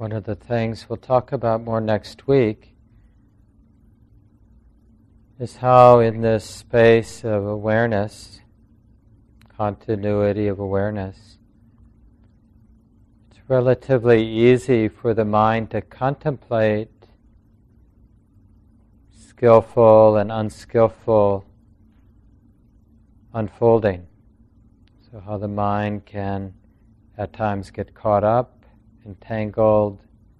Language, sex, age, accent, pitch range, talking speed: English, male, 40-59, American, 105-115 Hz, 85 wpm